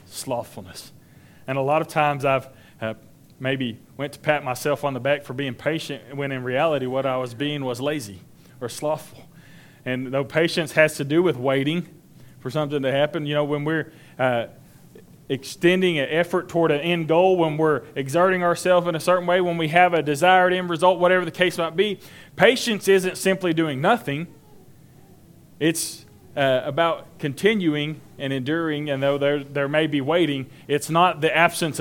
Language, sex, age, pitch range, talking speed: English, male, 30-49, 135-165 Hz, 180 wpm